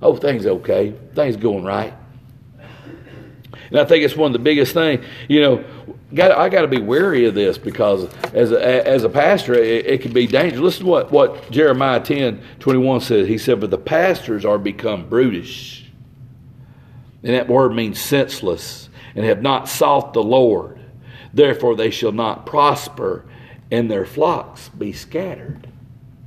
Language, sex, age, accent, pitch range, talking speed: English, male, 50-69, American, 125-175 Hz, 165 wpm